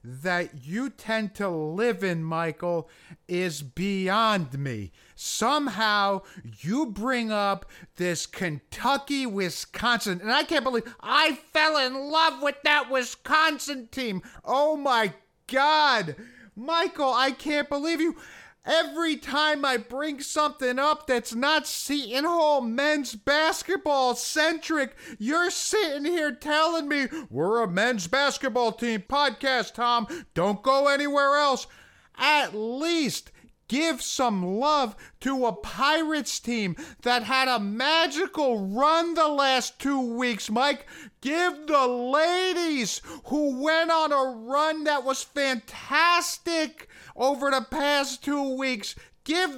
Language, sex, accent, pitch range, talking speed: English, male, American, 235-310 Hz, 125 wpm